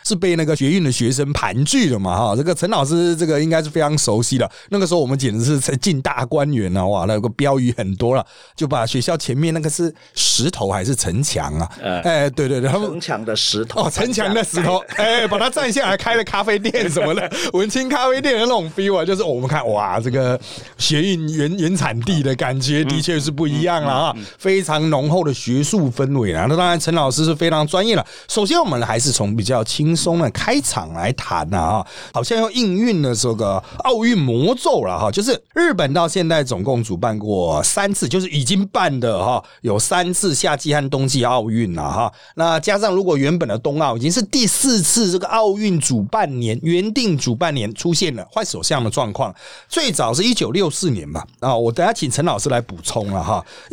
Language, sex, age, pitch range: Chinese, male, 30-49, 125-185 Hz